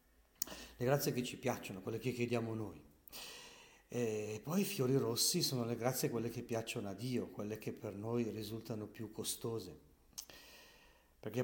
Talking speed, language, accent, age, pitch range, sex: 155 wpm, Italian, native, 50-69, 100-120 Hz, male